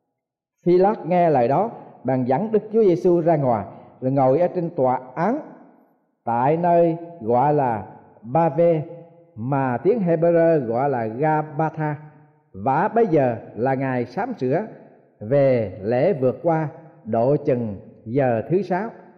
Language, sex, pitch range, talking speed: Vietnamese, male, 140-185 Hz, 145 wpm